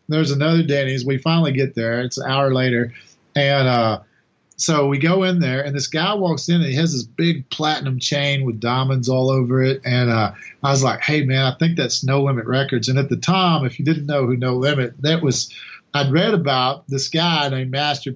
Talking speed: 225 wpm